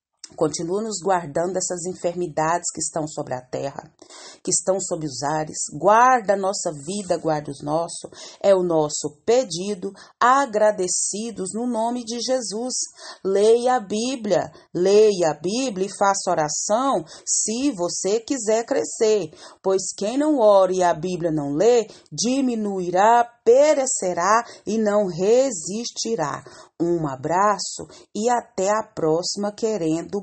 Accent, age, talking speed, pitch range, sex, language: Brazilian, 40-59, 130 wpm, 175-225 Hz, female, Portuguese